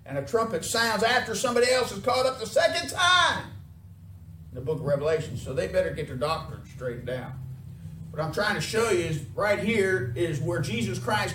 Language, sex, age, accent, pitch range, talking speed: English, male, 50-69, American, 135-205 Hz, 205 wpm